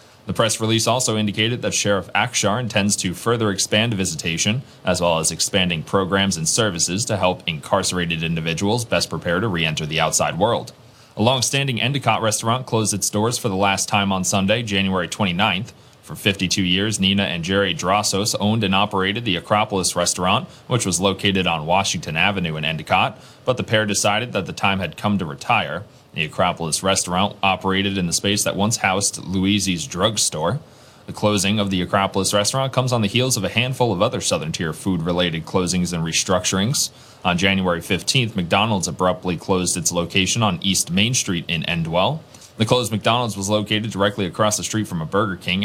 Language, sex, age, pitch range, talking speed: English, male, 30-49, 90-110 Hz, 180 wpm